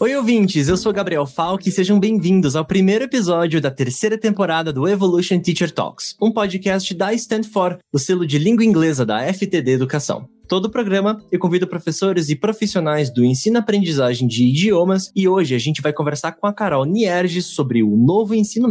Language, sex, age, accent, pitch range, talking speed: Portuguese, male, 20-39, Brazilian, 145-205 Hz, 190 wpm